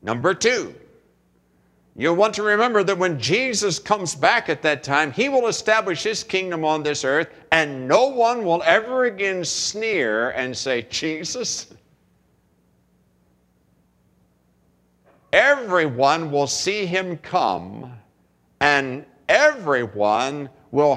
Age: 60-79